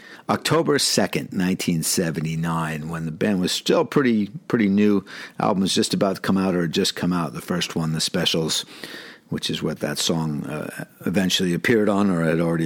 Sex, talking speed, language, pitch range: male, 180 wpm, English, 90-115 Hz